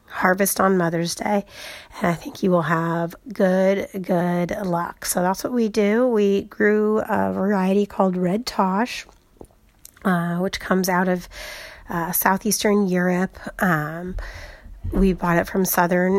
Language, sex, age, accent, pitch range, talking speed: English, female, 30-49, American, 180-215 Hz, 145 wpm